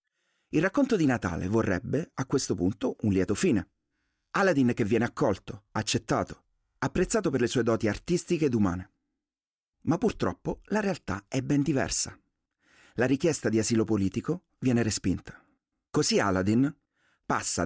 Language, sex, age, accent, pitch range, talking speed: Italian, male, 40-59, native, 105-140 Hz, 140 wpm